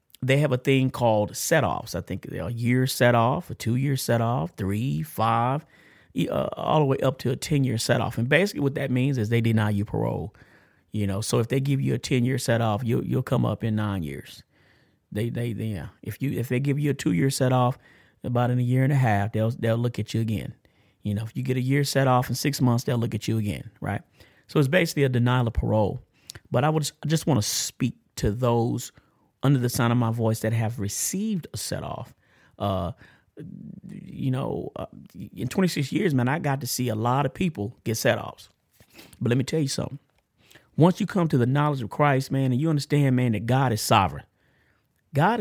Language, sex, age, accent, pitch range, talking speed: English, male, 30-49, American, 115-155 Hz, 235 wpm